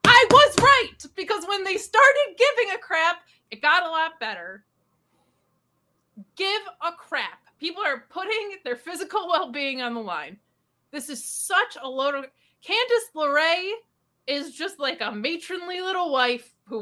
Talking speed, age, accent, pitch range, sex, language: 155 wpm, 20-39, American, 240-360 Hz, female, English